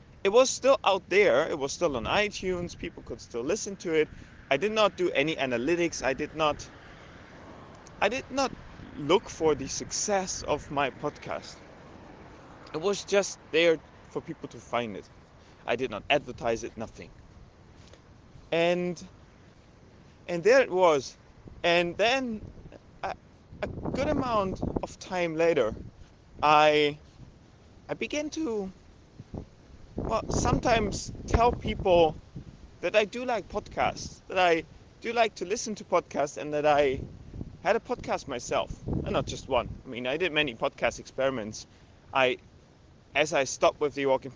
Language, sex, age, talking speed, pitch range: English, male, 30-49, 150 wpm, 140-195 Hz